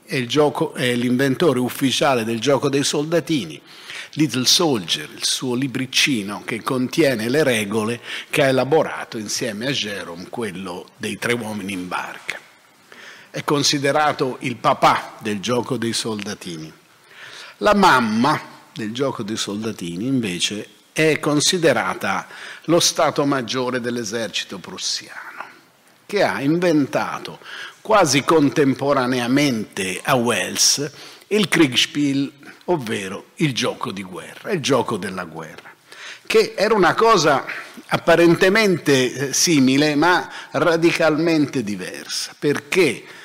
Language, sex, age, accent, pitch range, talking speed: Italian, male, 50-69, native, 120-150 Hz, 110 wpm